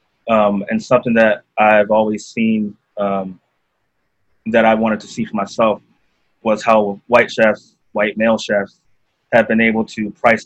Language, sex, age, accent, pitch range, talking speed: English, male, 20-39, American, 100-115 Hz, 155 wpm